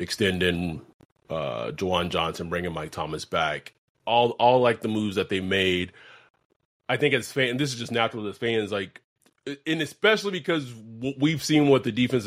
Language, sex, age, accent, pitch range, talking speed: English, male, 30-49, American, 110-140 Hz, 170 wpm